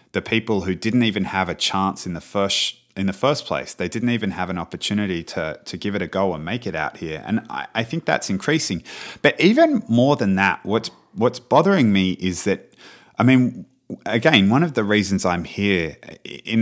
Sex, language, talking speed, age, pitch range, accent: male, English, 215 wpm, 30-49, 95-115 Hz, Australian